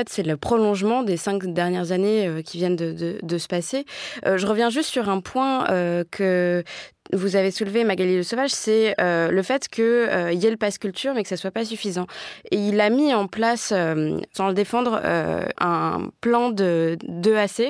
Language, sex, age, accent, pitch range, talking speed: French, female, 20-39, French, 180-225 Hz, 205 wpm